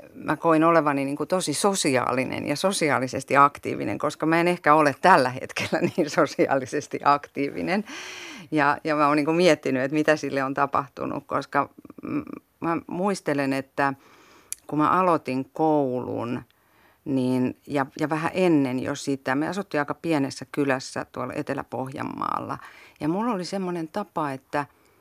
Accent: native